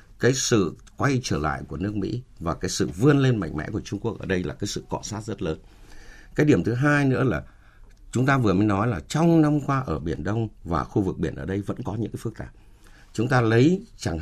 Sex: male